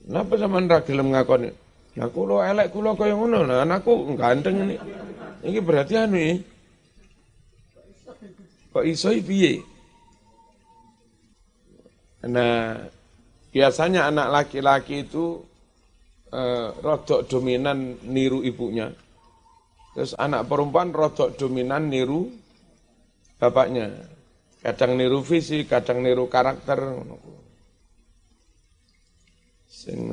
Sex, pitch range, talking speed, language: male, 115-160 Hz, 95 wpm, Indonesian